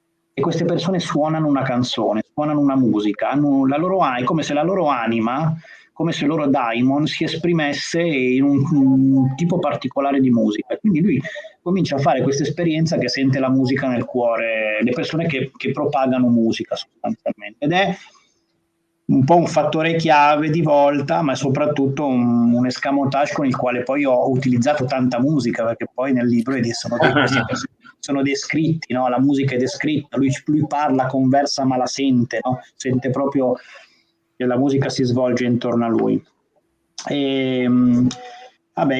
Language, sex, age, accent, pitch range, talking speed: Italian, male, 30-49, native, 120-145 Hz, 170 wpm